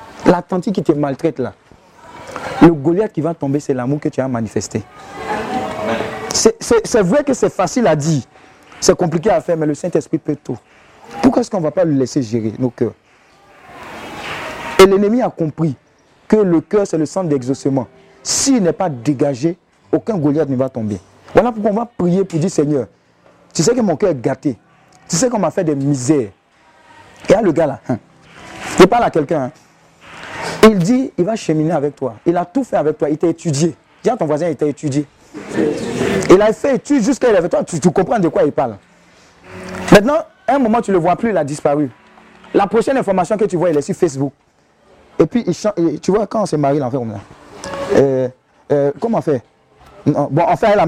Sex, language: male, French